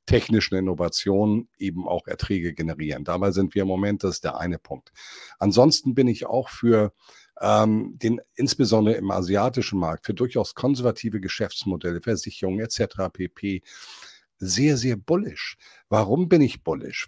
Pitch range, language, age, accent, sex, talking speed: 90-115 Hz, German, 50-69, German, male, 145 wpm